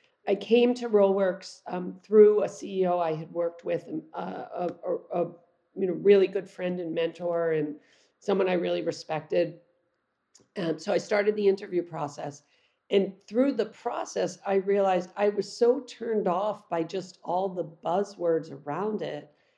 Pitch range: 170-205 Hz